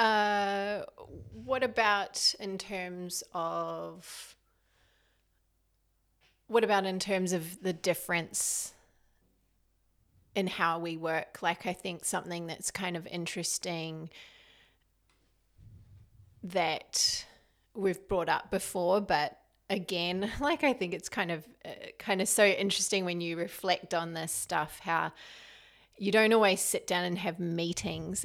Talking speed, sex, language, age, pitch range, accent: 125 wpm, female, English, 30-49, 165-195 Hz, Australian